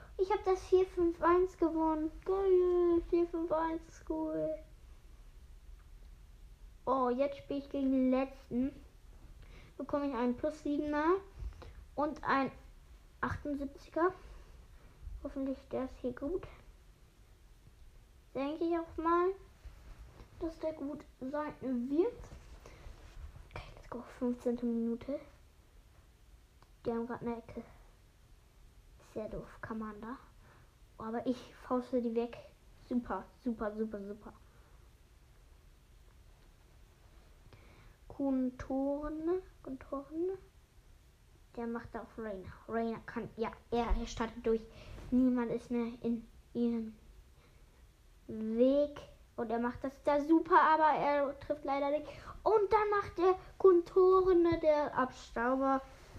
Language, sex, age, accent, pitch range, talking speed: English, female, 10-29, German, 235-325 Hz, 105 wpm